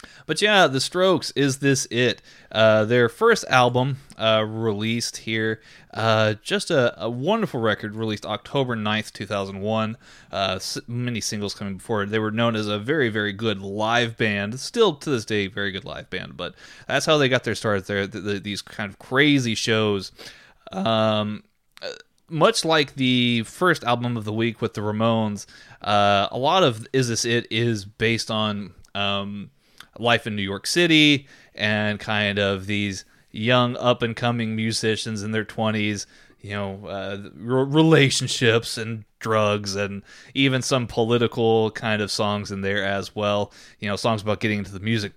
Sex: male